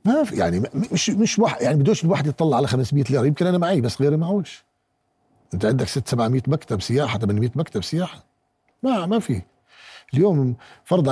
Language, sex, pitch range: Arabic, male, 135-185 Hz